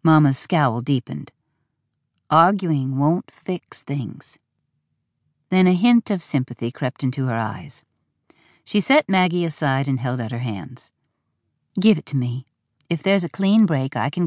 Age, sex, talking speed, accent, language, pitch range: 50-69, female, 150 wpm, American, English, 130-175 Hz